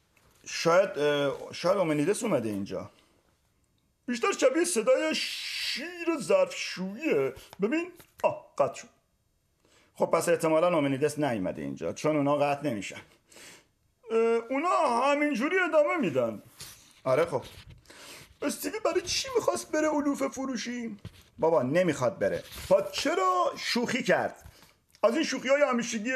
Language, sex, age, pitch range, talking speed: Persian, male, 50-69, 190-300 Hz, 110 wpm